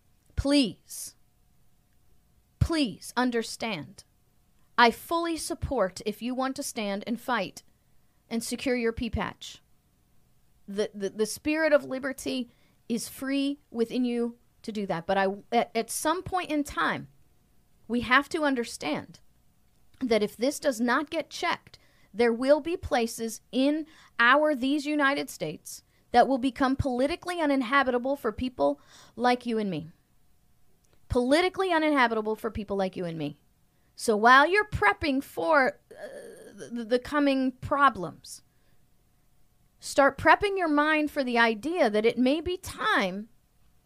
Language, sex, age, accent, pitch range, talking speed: English, female, 40-59, American, 225-290 Hz, 135 wpm